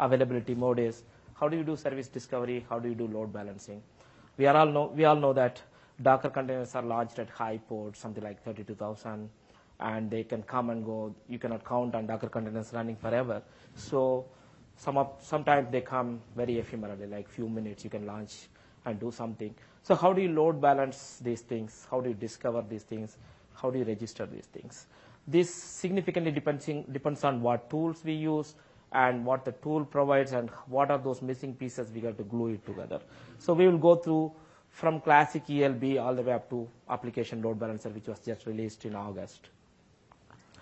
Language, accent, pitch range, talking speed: English, Indian, 115-140 Hz, 195 wpm